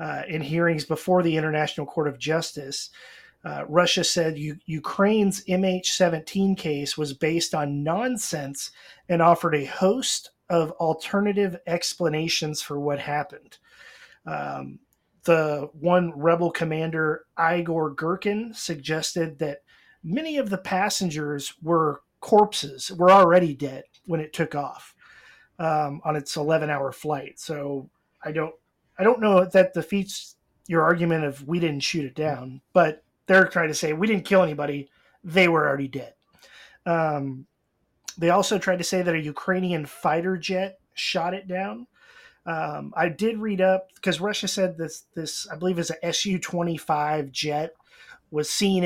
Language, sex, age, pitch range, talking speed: English, male, 30-49, 150-180 Hz, 145 wpm